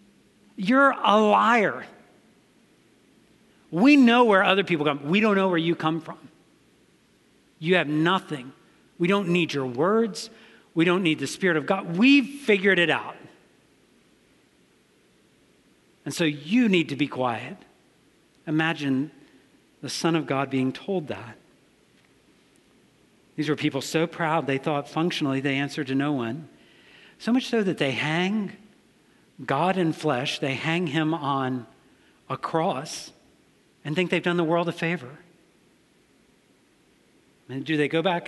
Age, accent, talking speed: 50-69, American, 145 wpm